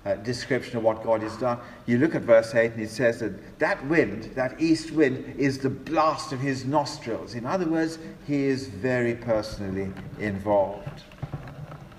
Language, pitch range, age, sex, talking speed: English, 105-140 Hz, 50-69, male, 175 wpm